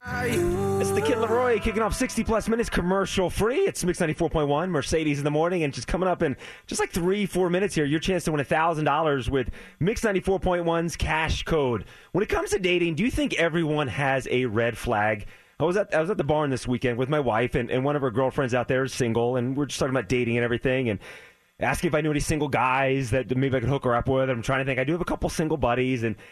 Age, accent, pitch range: 30-49, American, 125-170 Hz